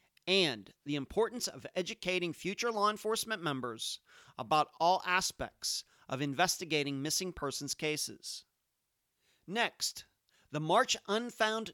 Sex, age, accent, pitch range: male, 40-59, American, 140-185 Hz